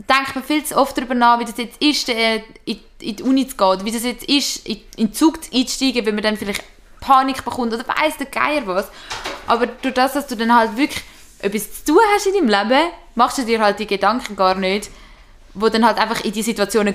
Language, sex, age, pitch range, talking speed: German, female, 20-39, 200-255 Hz, 235 wpm